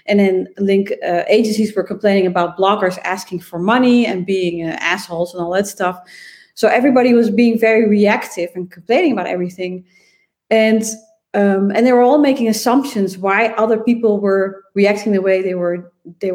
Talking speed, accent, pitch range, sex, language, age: 175 wpm, Dutch, 190-230 Hz, female, English, 30-49